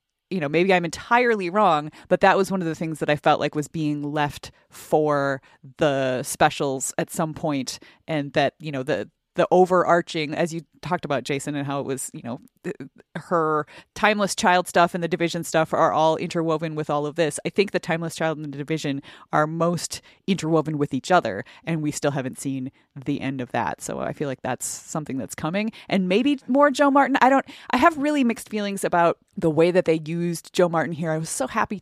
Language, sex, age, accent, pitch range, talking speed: English, female, 30-49, American, 150-180 Hz, 215 wpm